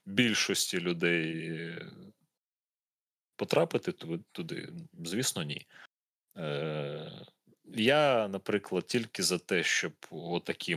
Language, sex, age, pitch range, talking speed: Ukrainian, male, 30-49, 80-95 Hz, 85 wpm